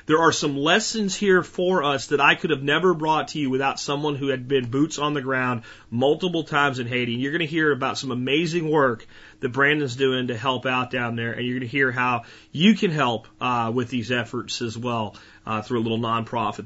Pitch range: 120-150 Hz